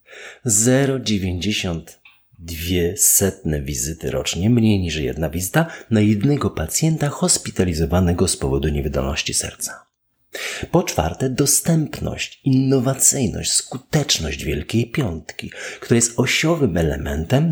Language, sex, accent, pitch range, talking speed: Polish, male, native, 85-135 Hz, 85 wpm